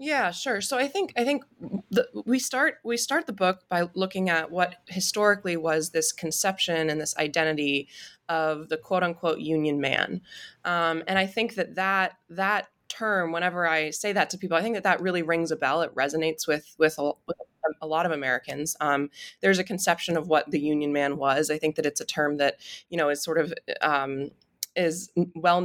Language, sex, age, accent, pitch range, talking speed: English, female, 20-39, American, 155-190 Hz, 205 wpm